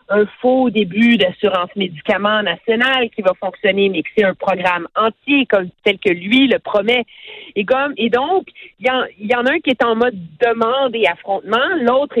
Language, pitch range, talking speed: French, 200-270 Hz, 180 wpm